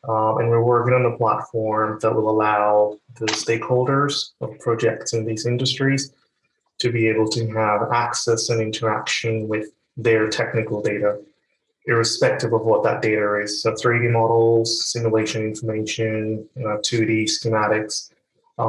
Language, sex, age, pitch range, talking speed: English, male, 20-39, 110-115 Hz, 140 wpm